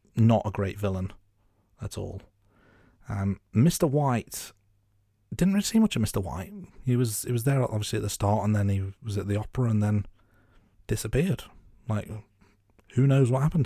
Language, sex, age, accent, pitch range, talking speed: English, male, 30-49, British, 100-120 Hz, 175 wpm